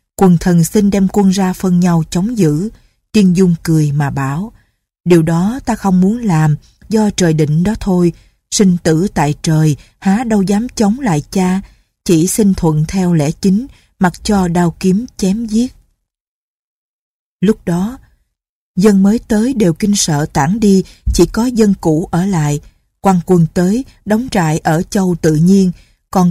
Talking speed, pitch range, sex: 170 wpm, 160-205 Hz, female